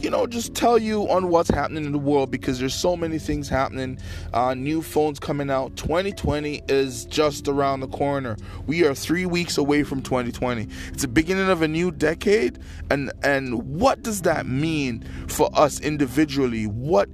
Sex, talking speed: male, 180 wpm